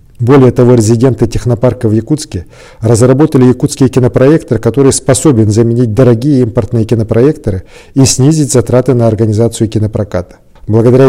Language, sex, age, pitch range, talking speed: Russian, male, 40-59, 110-130 Hz, 120 wpm